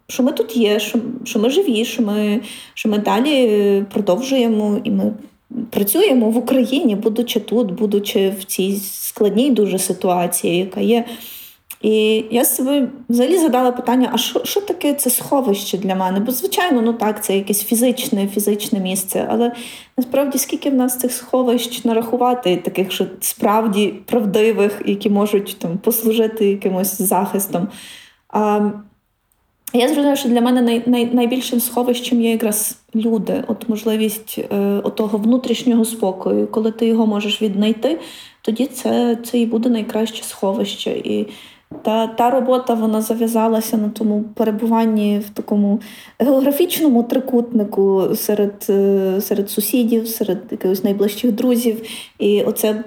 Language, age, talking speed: Ukrainian, 20-39, 135 wpm